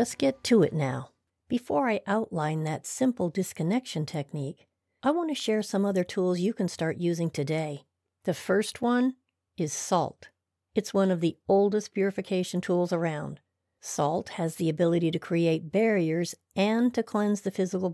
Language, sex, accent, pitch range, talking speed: English, female, American, 165-205 Hz, 165 wpm